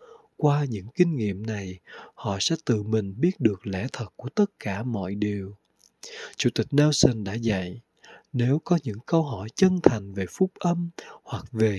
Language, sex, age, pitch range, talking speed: Vietnamese, male, 20-39, 105-155 Hz, 180 wpm